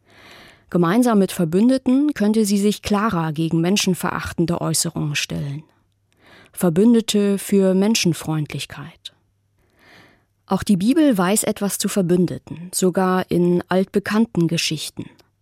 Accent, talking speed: German, 95 wpm